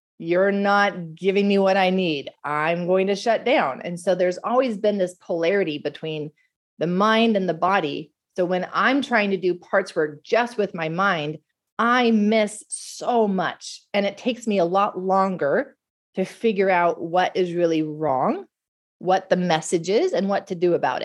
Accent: American